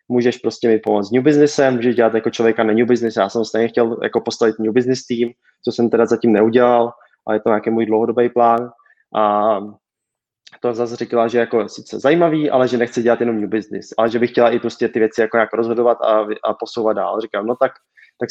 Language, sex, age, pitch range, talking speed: Czech, male, 20-39, 120-140 Hz, 225 wpm